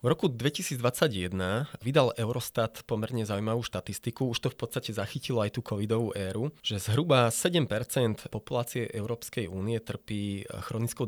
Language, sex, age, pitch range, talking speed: Slovak, male, 20-39, 105-130 Hz, 135 wpm